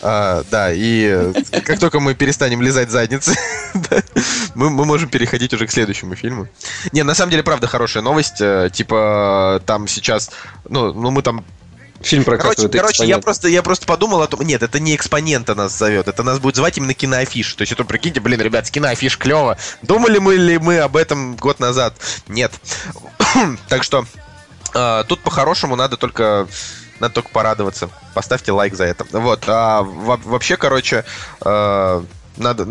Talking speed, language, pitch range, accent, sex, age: 155 wpm, Russian, 105-135 Hz, native, male, 20-39